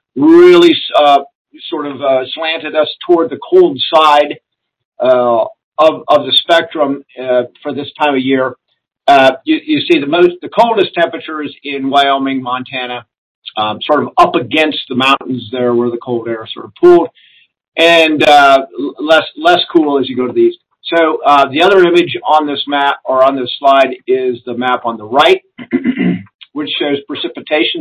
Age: 50-69